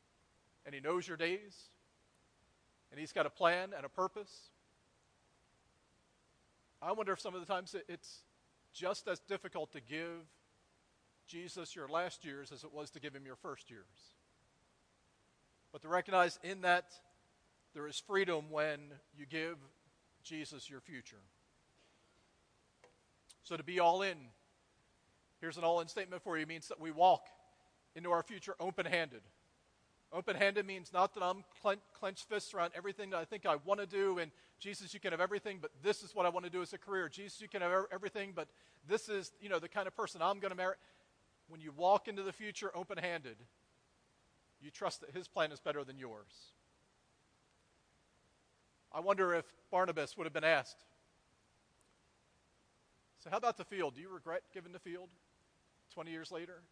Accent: American